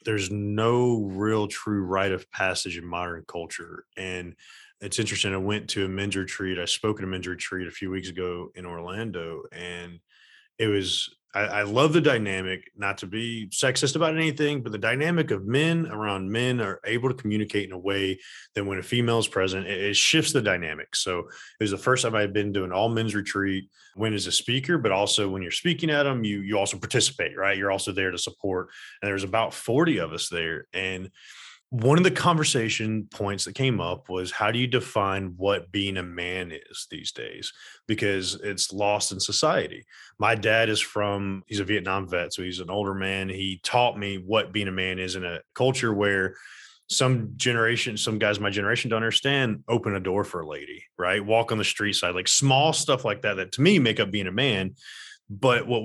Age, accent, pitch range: 20-39, American, 95-115 Hz